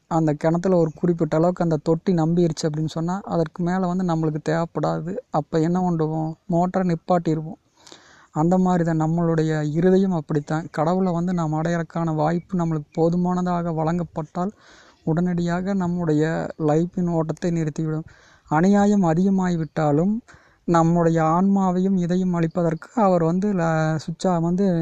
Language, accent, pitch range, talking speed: Tamil, native, 155-180 Hz, 120 wpm